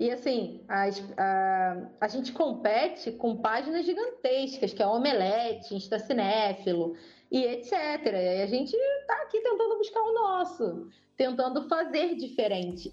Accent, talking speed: Brazilian, 130 wpm